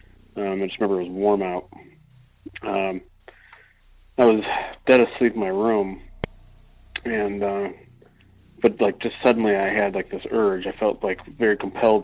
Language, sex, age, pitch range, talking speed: English, male, 30-49, 95-115 Hz, 160 wpm